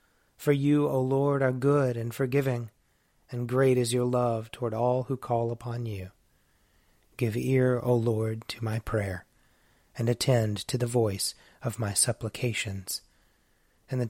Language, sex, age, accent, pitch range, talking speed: English, male, 30-49, American, 110-130 Hz, 155 wpm